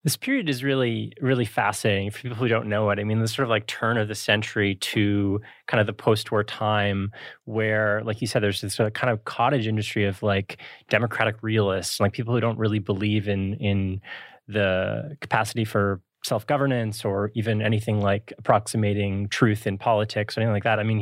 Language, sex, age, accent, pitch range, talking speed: English, male, 20-39, American, 105-120 Hz, 195 wpm